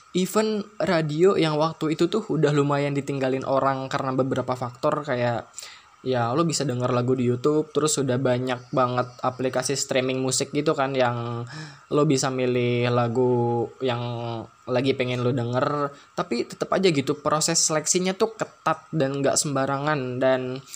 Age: 10-29